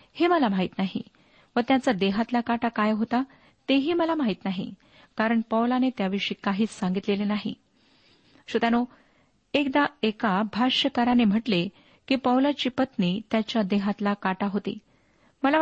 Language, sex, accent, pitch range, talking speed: Marathi, female, native, 205-265 Hz, 125 wpm